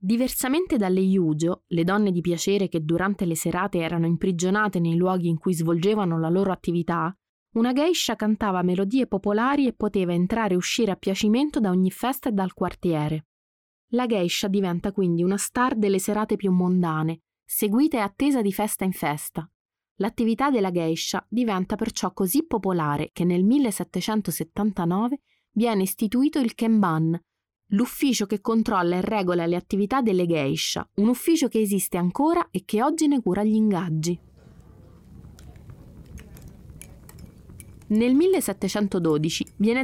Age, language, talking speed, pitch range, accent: 20-39, Italian, 140 wpm, 180-230 Hz, native